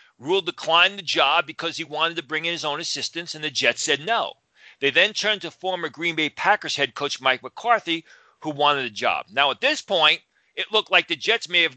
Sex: male